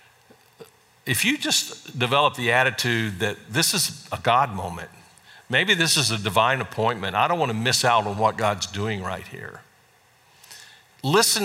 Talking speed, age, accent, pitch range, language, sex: 160 wpm, 50-69, American, 115-155 Hz, English, male